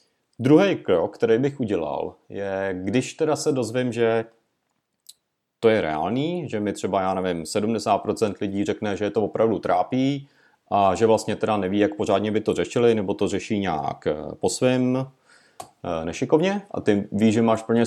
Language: Czech